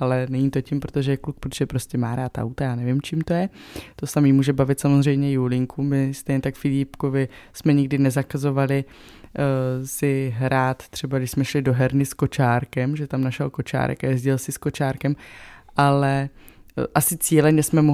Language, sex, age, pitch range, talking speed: Czech, female, 20-39, 135-160 Hz, 185 wpm